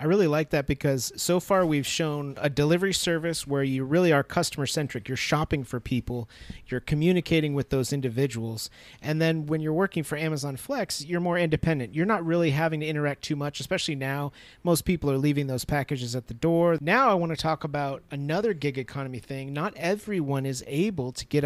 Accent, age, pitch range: American, 30-49, 135-175 Hz